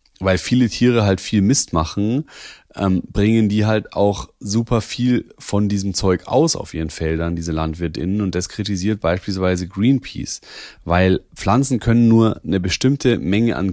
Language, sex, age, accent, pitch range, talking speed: German, male, 30-49, German, 90-115 Hz, 155 wpm